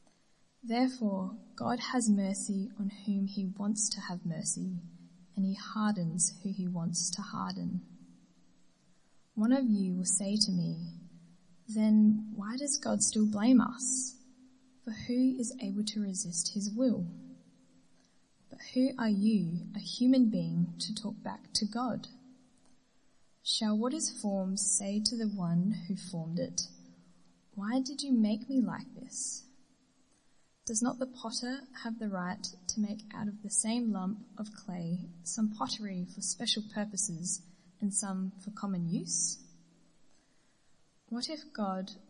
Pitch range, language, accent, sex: 185-230 Hz, English, Australian, female